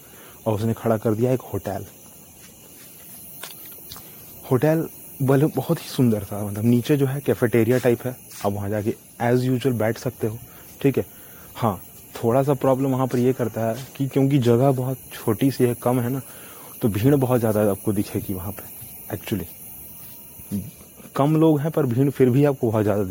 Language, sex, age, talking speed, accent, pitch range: Hindi, male, 30-49, 175 wpm, native, 110-135 Hz